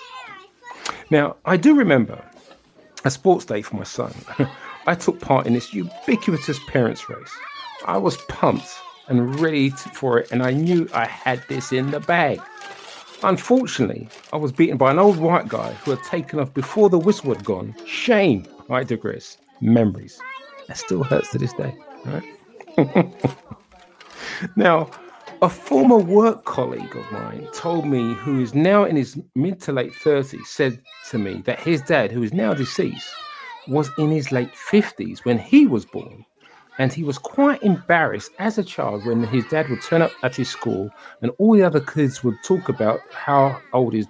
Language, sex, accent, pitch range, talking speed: English, male, British, 130-210 Hz, 175 wpm